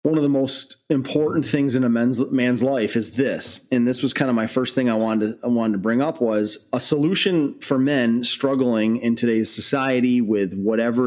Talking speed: 215 wpm